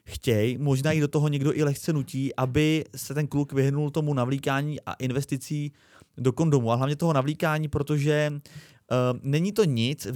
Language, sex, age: Czech, male, 30-49